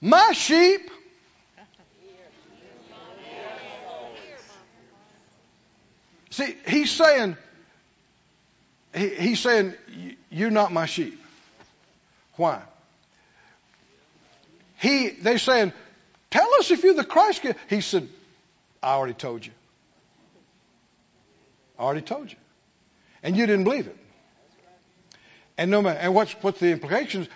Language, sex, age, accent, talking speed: English, male, 60-79, American, 105 wpm